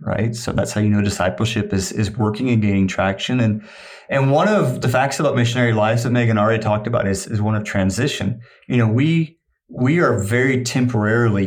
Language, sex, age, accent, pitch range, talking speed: English, male, 30-49, American, 105-125 Hz, 205 wpm